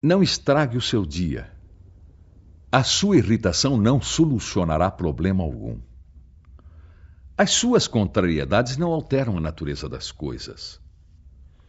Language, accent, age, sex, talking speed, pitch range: Portuguese, Brazilian, 60-79, male, 110 wpm, 80-130 Hz